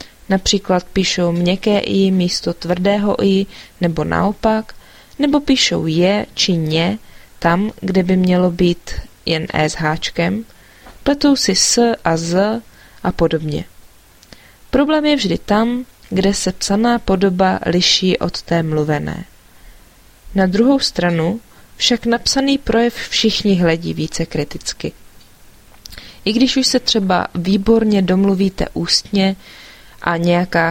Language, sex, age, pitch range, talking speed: English, female, 20-39, 170-215 Hz, 125 wpm